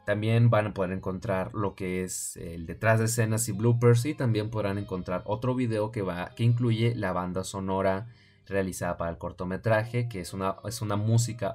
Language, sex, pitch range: Spanish, male, 95-120 Hz